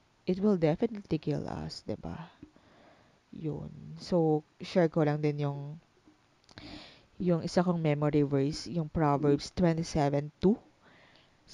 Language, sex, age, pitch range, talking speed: English, female, 20-39, 155-185 Hz, 110 wpm